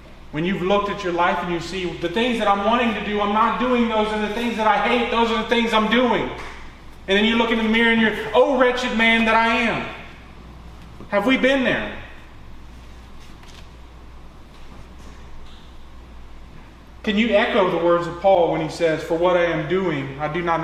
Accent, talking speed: American, 200 wpm